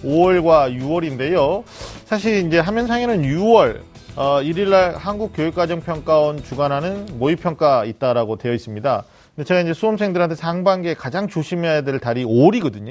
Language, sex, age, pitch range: Korean, male, 40-59, 130-180 Hz